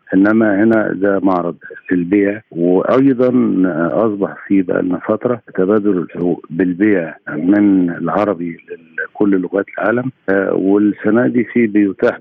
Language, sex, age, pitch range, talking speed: Arabic, male, 50-69, 90-110 Hz, 110 wpm